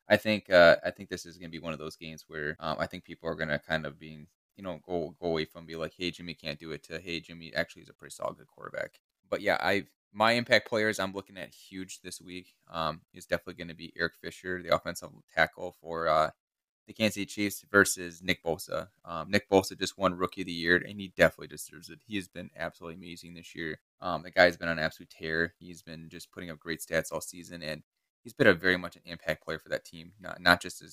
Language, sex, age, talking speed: English, male, 20-39, 250 wpm